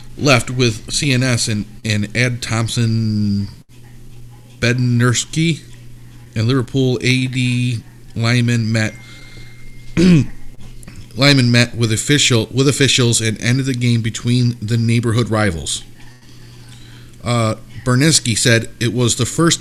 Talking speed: 105 wpm